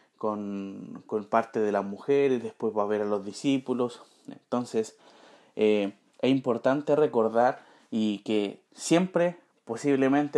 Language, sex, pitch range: Spanish, male, 110-135 Hz